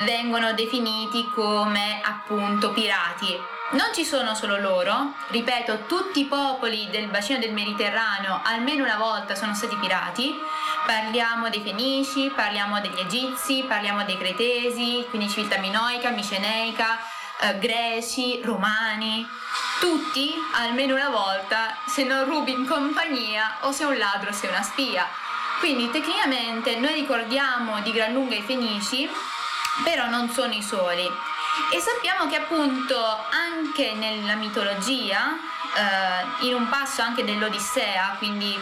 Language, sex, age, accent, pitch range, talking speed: Italian, female, 20-39, native, 210-275 Hz, 130 wpm